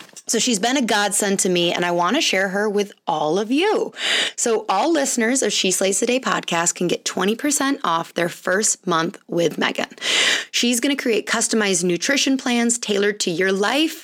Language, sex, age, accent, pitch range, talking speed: English, female, 20-39, American, 185-240 Hz, 195 wpm